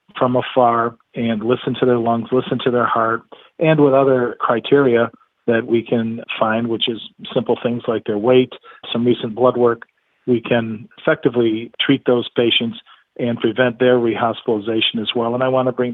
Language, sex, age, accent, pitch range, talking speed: English, male, 40-59, American, 115-125 Hz, 175 wpm